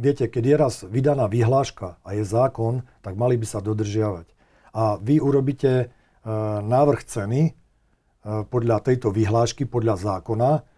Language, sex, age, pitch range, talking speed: Slovak, male, 50-69, 115-135 Hz, 145 wpm